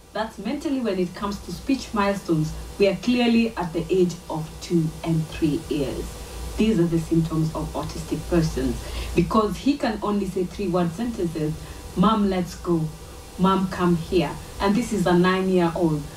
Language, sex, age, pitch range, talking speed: English, female, 30-49, 165-210 Hz, 175 wpm